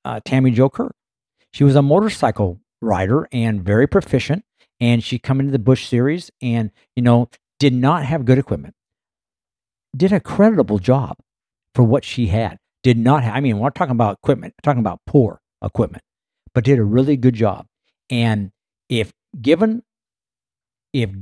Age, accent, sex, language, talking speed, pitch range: 60-79, American, male, English, 165 wpm, 110-145 Hz